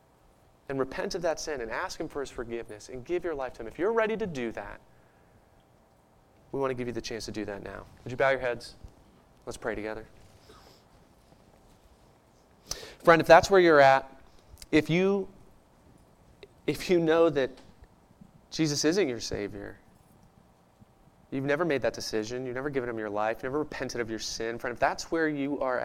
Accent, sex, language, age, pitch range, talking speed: American, male, English, 30-49, 110-140 Hz, 190 wpm